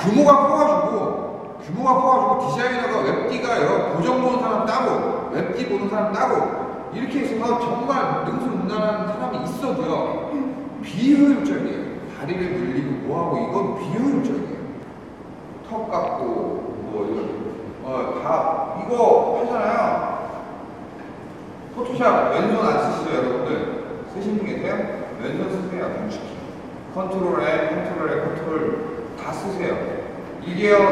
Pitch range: 185-250 Hz